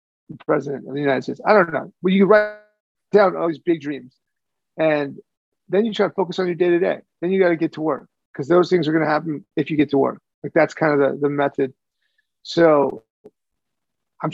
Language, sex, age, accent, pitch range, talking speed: English, male, 30-49, American, 140-170 Hz, 225 wpm